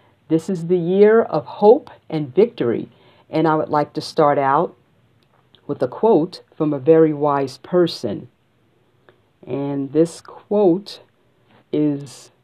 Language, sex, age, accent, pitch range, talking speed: English, female, 50-69, American, 140-190 Hz, 130 wpm